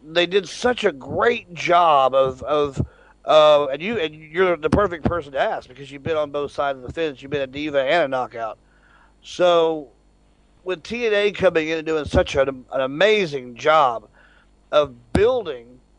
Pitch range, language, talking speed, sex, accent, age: 150-205 Hz, English, 180 wpm, male, American, 40-59